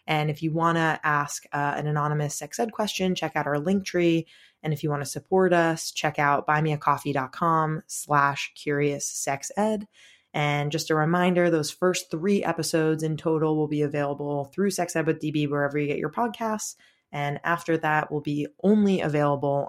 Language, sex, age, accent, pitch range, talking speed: English, female, 20-39, American, 145-175 Hz, 175 wpm